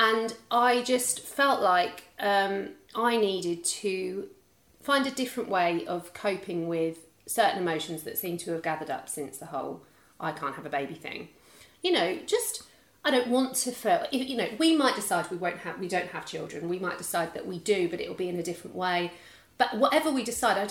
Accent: British